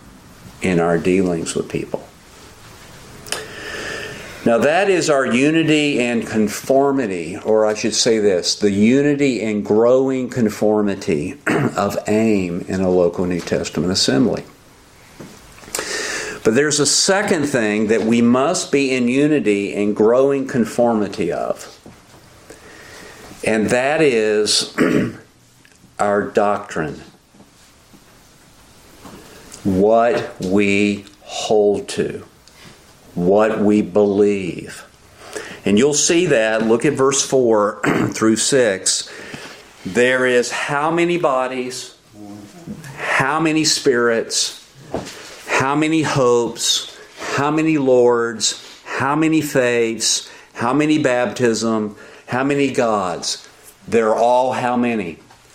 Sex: male